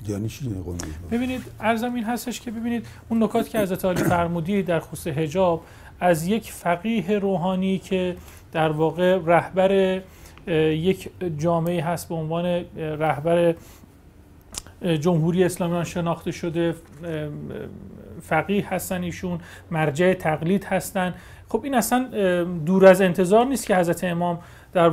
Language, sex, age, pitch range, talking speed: Persian, male, 40-59, 170-200 Hz, 120 wpm